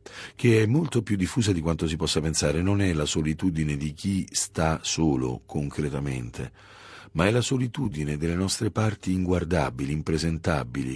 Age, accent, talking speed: 40-59, native, 155 wpm